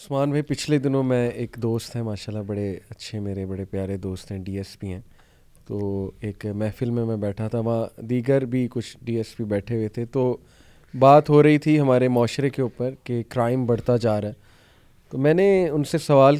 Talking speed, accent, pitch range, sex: 190 wpm, Indian, 110-140 Hz, male